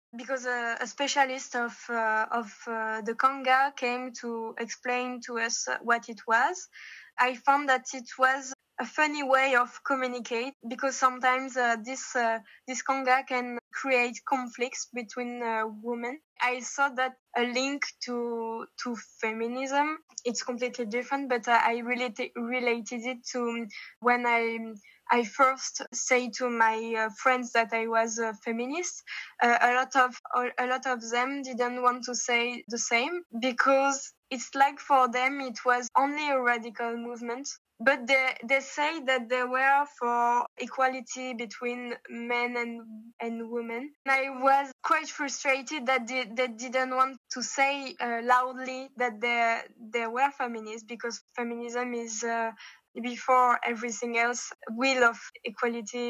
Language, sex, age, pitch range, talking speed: Slovak, female, 10-29, 235-260 Hz, 150 wpm